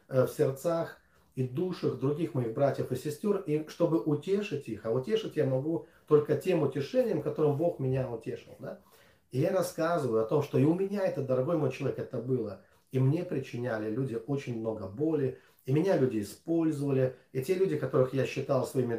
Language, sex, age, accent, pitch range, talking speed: Russian, male, 30-49, native, 120-160 Hz, 180 wpm